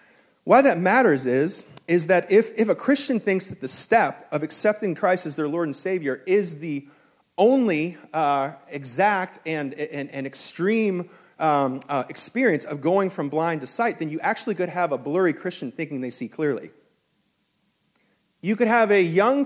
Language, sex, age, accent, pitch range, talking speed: English, male, 30-49, American, 150-205 Hz, 175 wpm